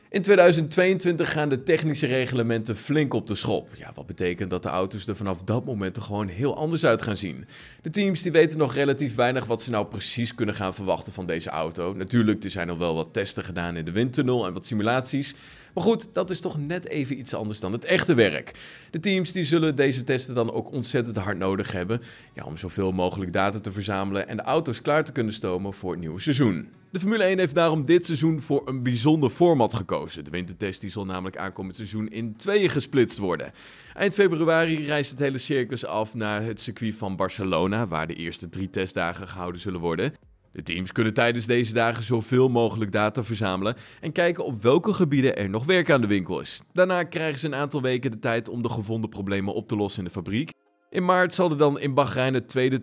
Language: Dutch